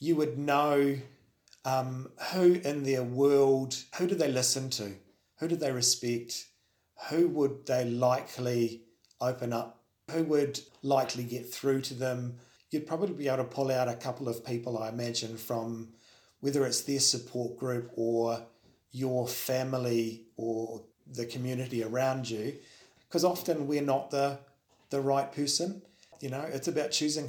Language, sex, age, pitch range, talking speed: English, male, 30-49, 120-140 Hz, 155 wpm